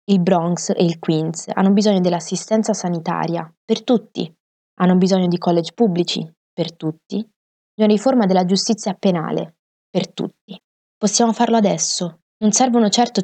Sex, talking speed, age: female, 145 wpm, 20-39